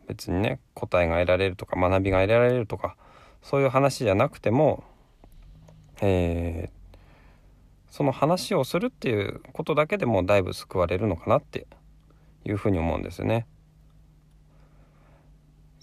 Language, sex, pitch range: Japanese, male, 90-140 Hz